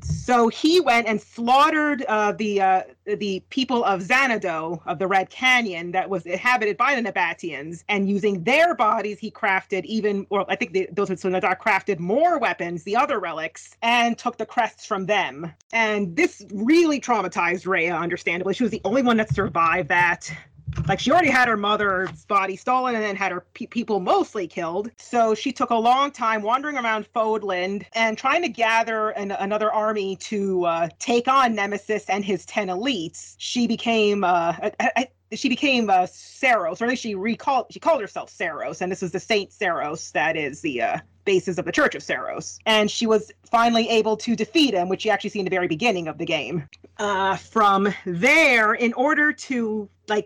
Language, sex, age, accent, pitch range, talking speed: English, female, 30-49, American, 190-240 Hz, 195 wpm